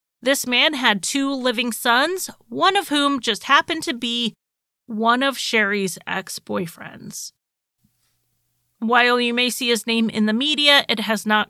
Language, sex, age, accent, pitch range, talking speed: English, female, 30-49, American, 210-270 Hz, 150 wpm